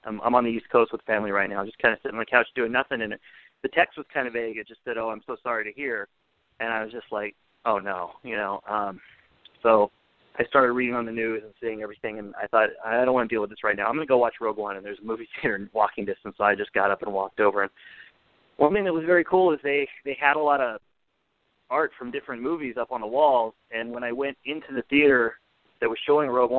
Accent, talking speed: American, 280 wpm